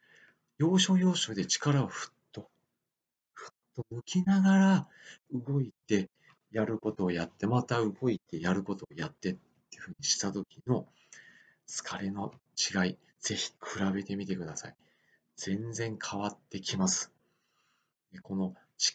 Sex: male